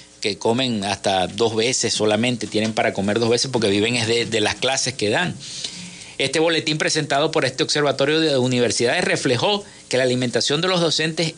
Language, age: Spanish, 50-69